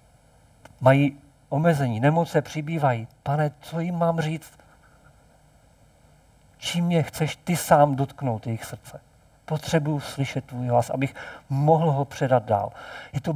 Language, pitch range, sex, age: Czech, 125-160 Hz, male, 50-69